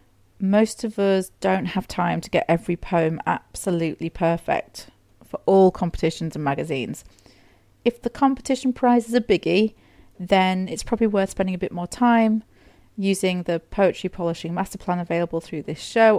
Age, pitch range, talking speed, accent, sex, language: 40-59, 155-195 Hz, 160 wpm, British, female, English